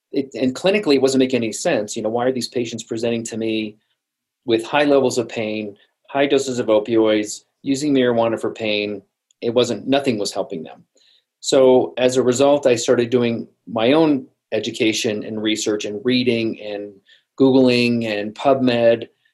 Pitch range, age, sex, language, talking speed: 115-130 Hz, 40-59, male, English, 165 wpm